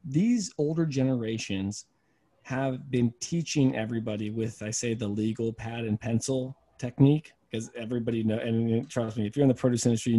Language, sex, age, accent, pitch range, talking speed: English, male, 20-39, American, 110-145 Hz, 170 wpm